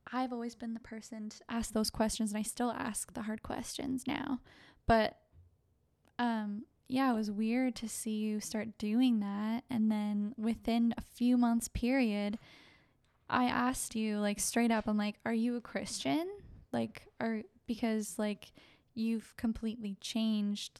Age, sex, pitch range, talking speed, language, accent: 10-29, female, 210-240 Hz, 160 wpm, English, American